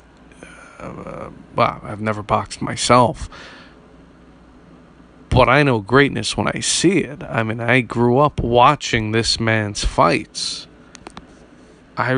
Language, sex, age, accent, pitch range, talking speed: English, male, 20-39, American, 110-130 Hz, 120 wpm